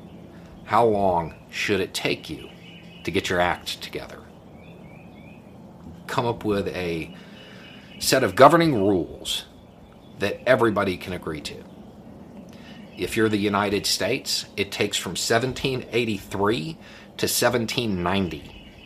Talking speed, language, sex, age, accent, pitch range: 110 wpm, English, male, 40-59, American, 95-115 Hz